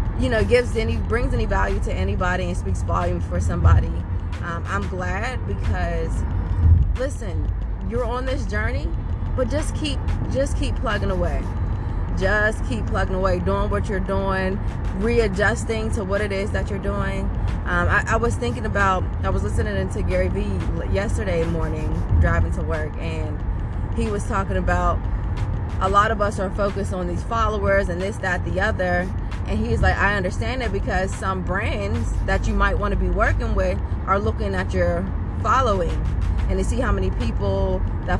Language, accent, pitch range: English, American, 90-100 Hz